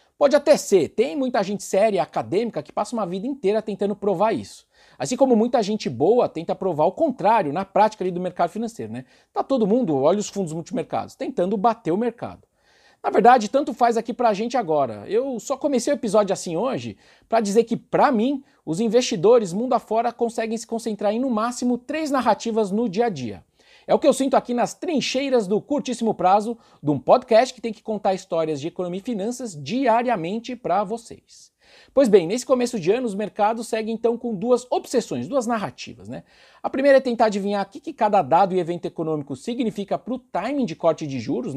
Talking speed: 205 wpm